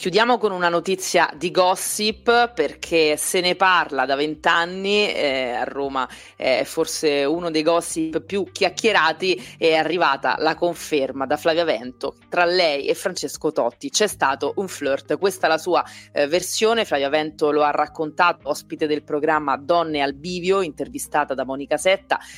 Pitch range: 150-185 Hz